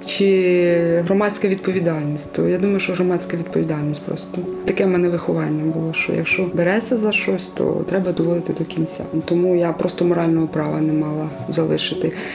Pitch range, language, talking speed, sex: 165-190 Hz, Ukrainian, 160 wpm, female